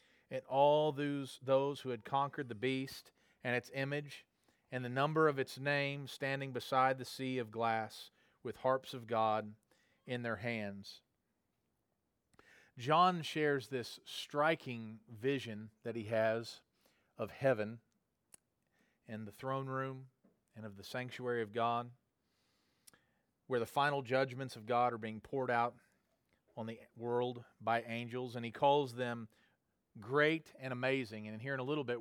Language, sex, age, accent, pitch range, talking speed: English, male, 40-59, American, 110-135 Hz, 150 wpm